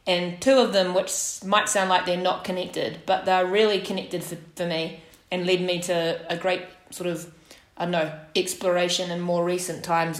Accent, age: Australian, 20-39